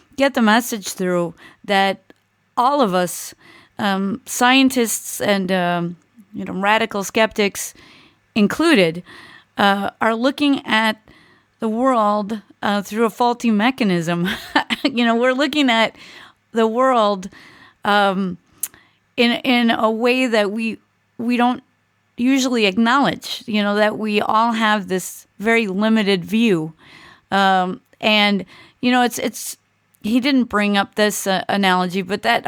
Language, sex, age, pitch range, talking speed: English, female, 30-49, 195-235 Hz, 130 wpm